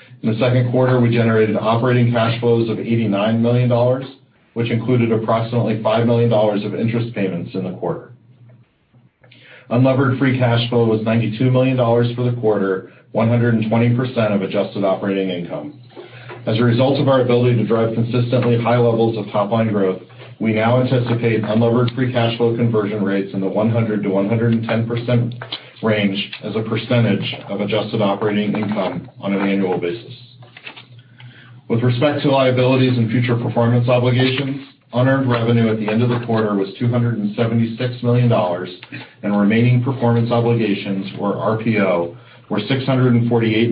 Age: 40-59